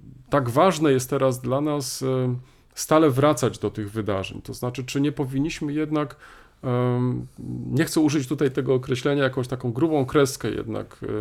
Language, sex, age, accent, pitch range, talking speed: Polish, male, 40-59, native, 125-150 Hz, 150 wpm